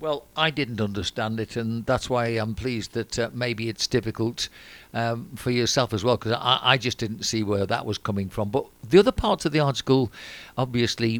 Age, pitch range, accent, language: 50-69, 115-130 Hz, British, English